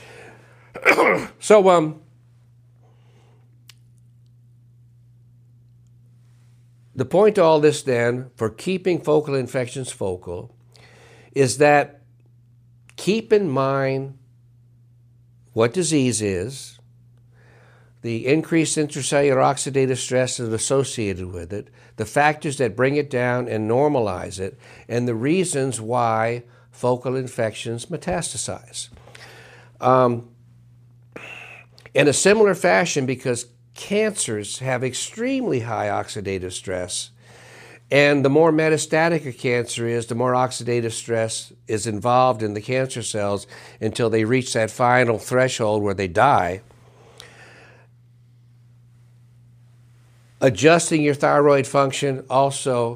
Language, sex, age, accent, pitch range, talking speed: English, male, 60-79, American, 120-135 Hz, 100 wpm